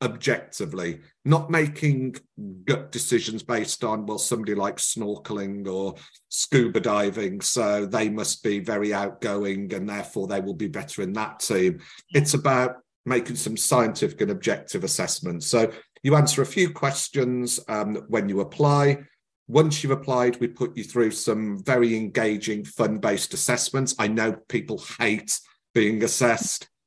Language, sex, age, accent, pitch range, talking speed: English, male, 40-59, British, 105-140 Hz, 145 wpm